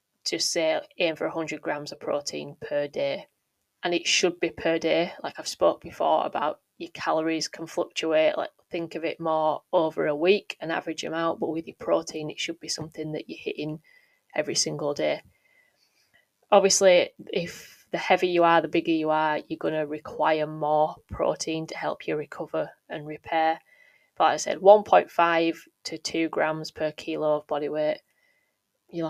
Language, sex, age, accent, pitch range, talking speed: English, female, 20-39, British, 155-190 Hz, 175 wpm